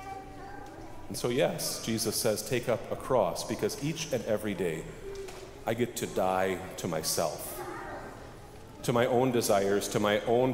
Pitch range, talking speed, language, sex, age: 115-150 Hz, 155 wpm, English, male, 40-59